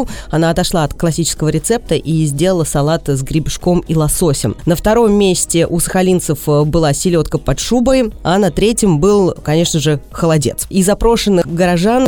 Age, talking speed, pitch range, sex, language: 20-39, 155 wpm, 160-195 Hz, female, Russian